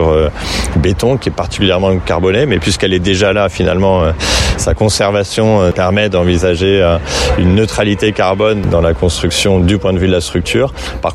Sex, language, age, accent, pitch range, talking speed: male, French, 30-49, French, 85-95 Hz, 170 wpm